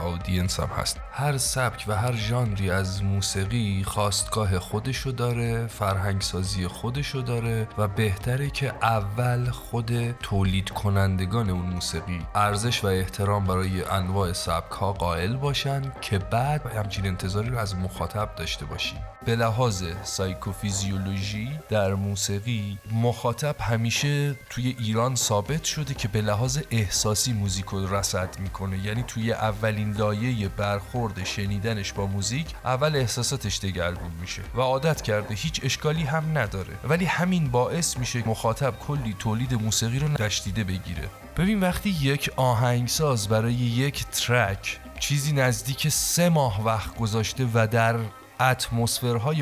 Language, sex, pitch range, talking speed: Persian, male, 100-125 Hz, 130 wpm